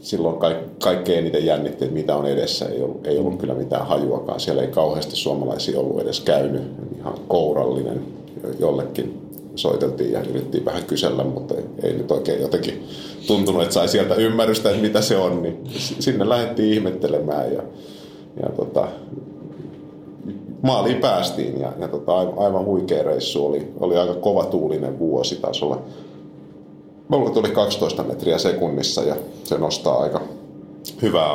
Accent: native